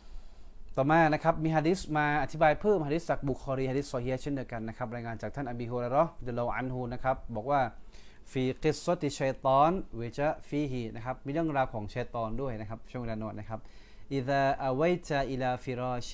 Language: Thai